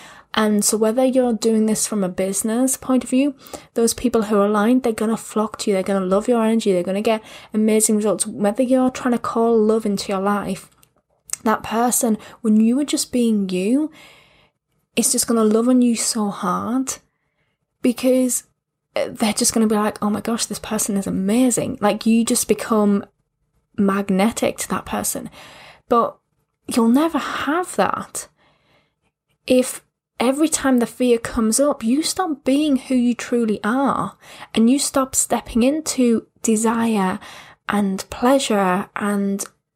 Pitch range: 205-255 Hz